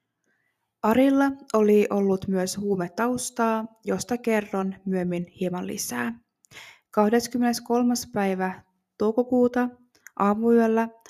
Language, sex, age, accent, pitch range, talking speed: Finnish, female, 20-39, native, 190-225 Hz, 75 wpm